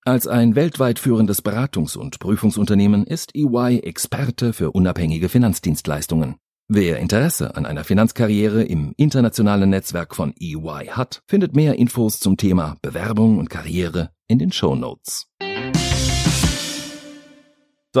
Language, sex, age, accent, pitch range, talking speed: German, male, 40-59, German, 105-140 Hz, 120 wpm